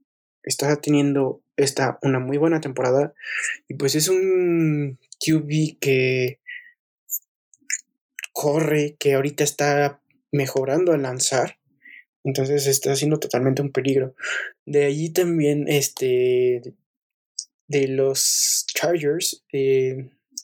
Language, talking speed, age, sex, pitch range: Spanish, 100 wpm, 20-39, male, 130-155 Hz